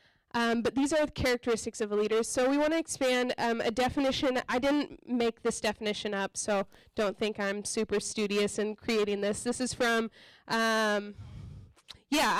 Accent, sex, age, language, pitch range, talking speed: American, female, 20-39, English, 220-275 Hz, 180 wpm